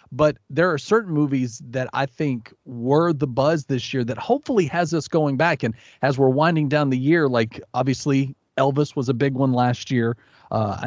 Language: English